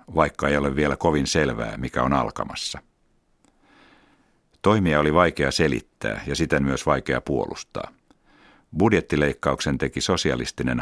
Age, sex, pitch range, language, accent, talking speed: 60-79, male, 70-85 Hz, Finnish, native, 115 wpm